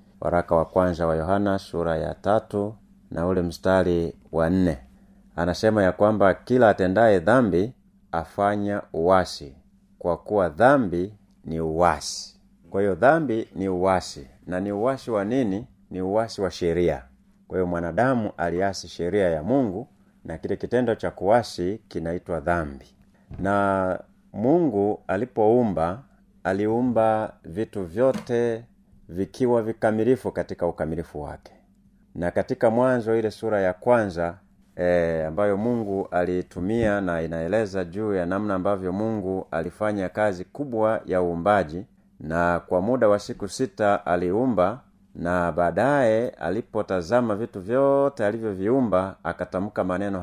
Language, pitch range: Swahili, 90-110 Hz